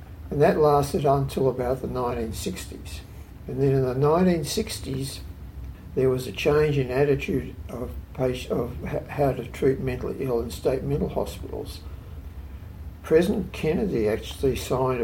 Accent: Australian